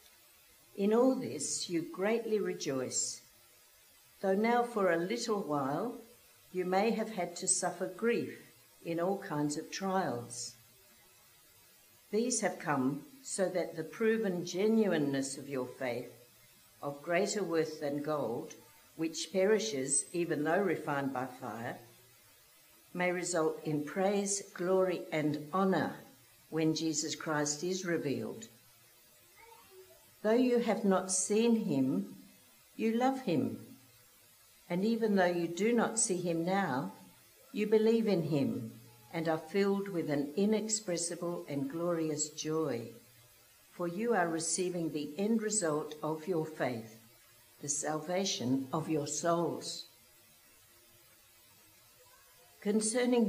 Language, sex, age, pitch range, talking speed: English, female, 60-79, 145-200 Hz, 120 wpm